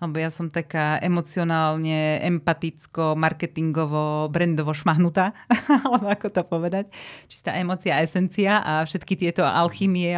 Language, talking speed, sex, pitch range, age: Slovak, 125 wpm, female, 160-195 Hz, 30-49